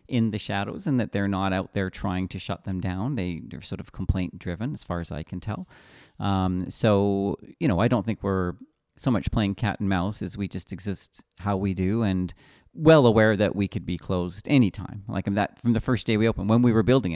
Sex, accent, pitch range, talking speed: male, American, 90-105 Hz, 240 wpm